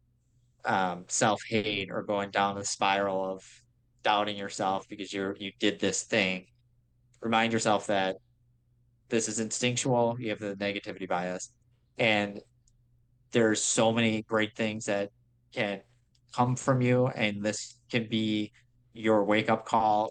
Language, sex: English, male